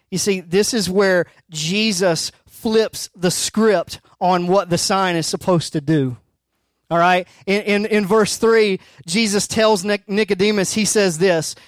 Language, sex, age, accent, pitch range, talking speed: English, male, 30-49, American, 165-220 Hz, 160 wpm